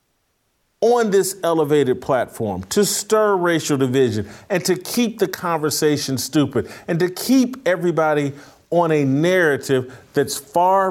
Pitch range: 140-215 Hz